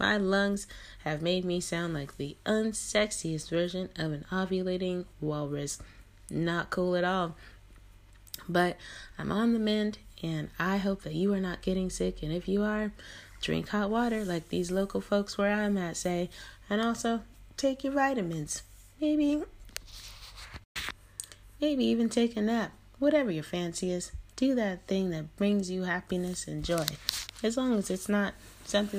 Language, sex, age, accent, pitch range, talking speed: English, female, 20-39, American, 150-205 Hz, 160 wpm